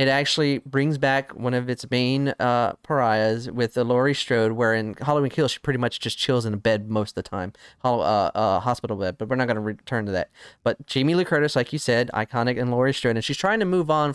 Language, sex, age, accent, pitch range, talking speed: English, male, 20-39, American, 120-145 Hz, 250 wpm